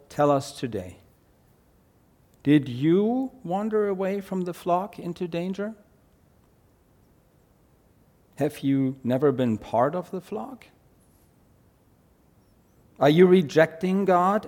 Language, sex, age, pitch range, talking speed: English, male, 50-69, 115-170 Hz, 100 wpm